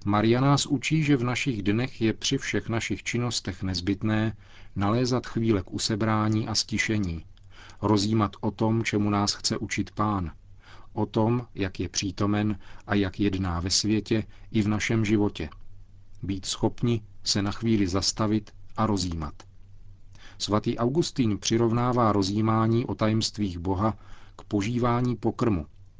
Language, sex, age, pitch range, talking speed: Czech, male, 40-59, 95-110 Hz, 135 wpm